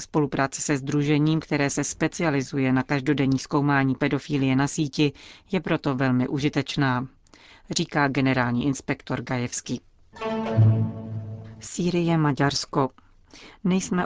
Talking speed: 100 wpm